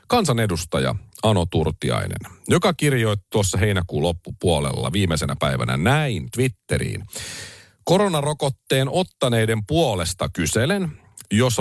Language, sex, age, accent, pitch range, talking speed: Finnish, male, 40-59, native, 90-130 Hz, 90 wpm